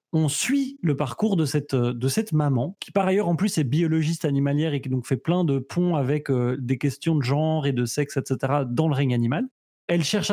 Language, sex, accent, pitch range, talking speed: French, male, French, 135-170 Hz, 225 wpm